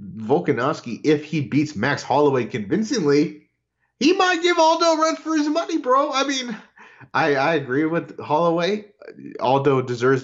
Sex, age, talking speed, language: male, 30-49, 150 wpm, English